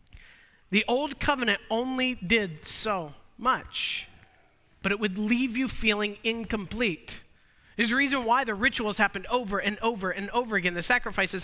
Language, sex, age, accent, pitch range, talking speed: English, male, 30-49, American, 190-245 Hz, 150 wpm